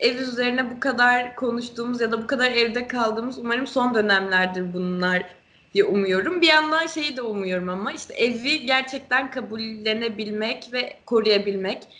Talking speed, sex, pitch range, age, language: 145 wpm, female, 205-270 Hz, 20-39, Turkish